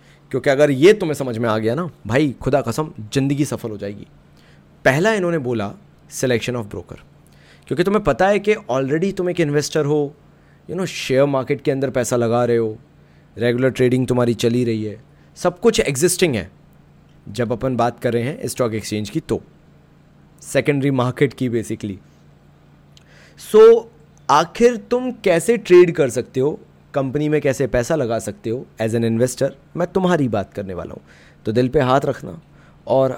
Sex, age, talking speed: male, 30-49, 175 wpm